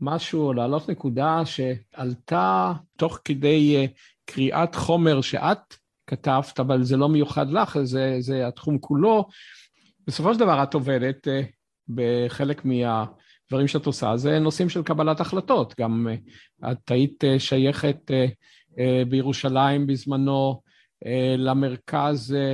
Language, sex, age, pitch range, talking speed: Hebrew, male, 50-69, 135-165 Hz, 105 wpm